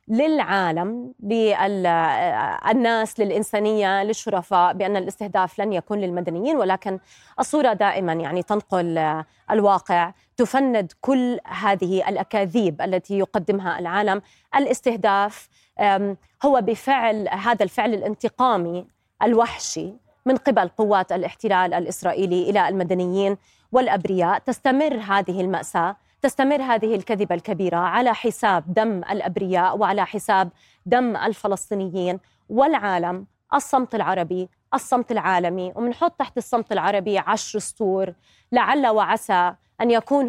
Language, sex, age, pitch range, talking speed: Arabic, female, 20-39, 180-225 Hz, 100 wpm